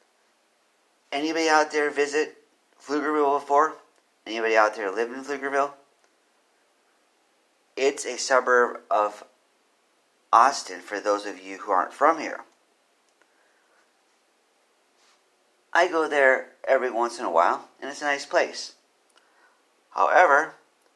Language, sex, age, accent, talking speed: English, male, 40-59, American, 110 wpm